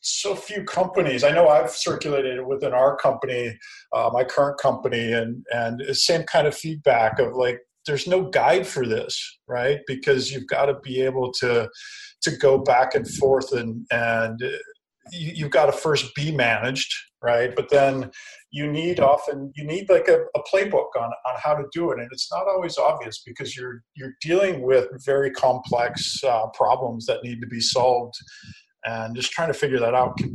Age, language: 40-59, English